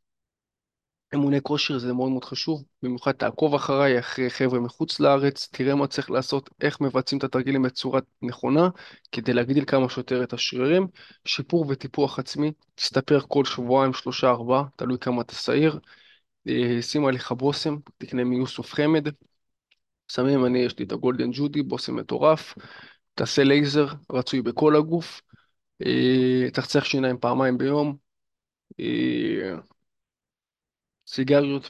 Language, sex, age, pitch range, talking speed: Hebrew, male, 20-39, 125-145 Hz, 125 wpm